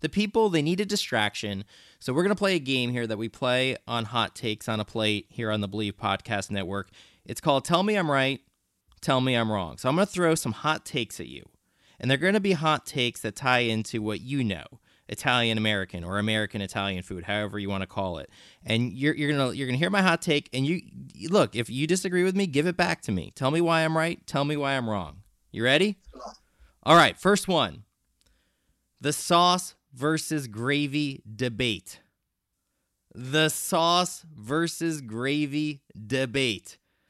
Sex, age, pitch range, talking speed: male, 20-39, 105-160 Hz, 190 wpm